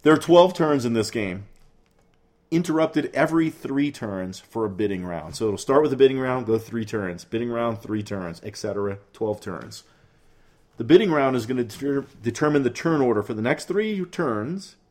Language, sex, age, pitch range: English, male, 40-59, 110-145 Hz